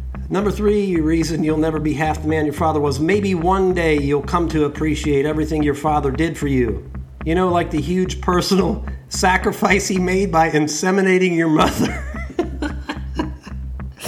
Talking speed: 160 wpm